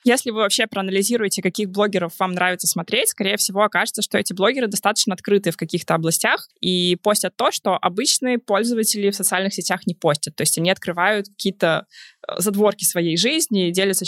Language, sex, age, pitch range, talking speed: Russian, female, 20-39, 185-225 Hz, 170 wpm